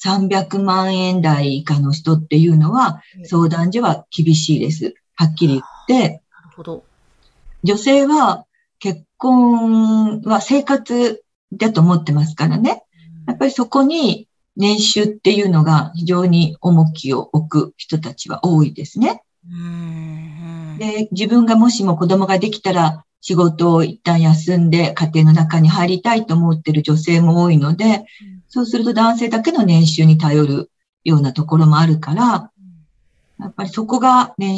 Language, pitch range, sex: Japanese, 160-225 Hz, female